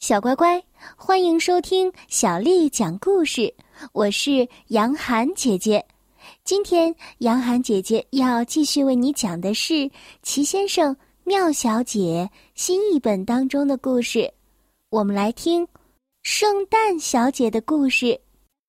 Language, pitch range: Chinese, 220-315 Hz